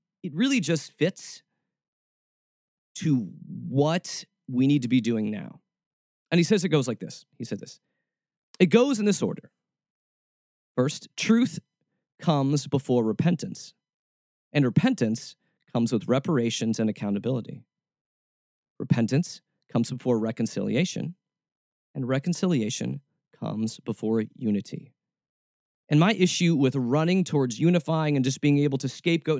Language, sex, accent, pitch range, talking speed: English, male, American, 135-215 Hz, 125 wpm